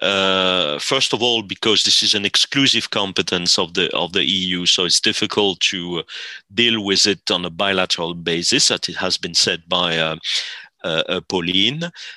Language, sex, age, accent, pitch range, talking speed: English, male, 40-59, French, 95-135 Hz, 175 wpm